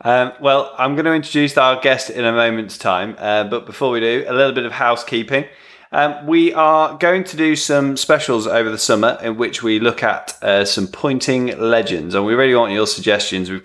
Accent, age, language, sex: British, 20-39, English, male